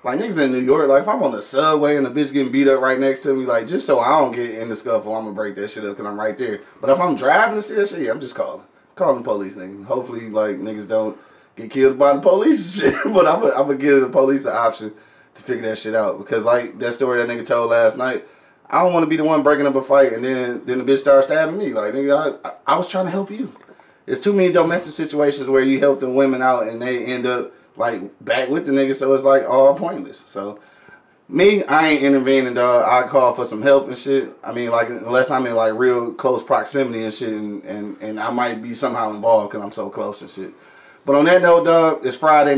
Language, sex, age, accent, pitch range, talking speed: English, male, 20-39, American, 120-140 Hz, 270 wpm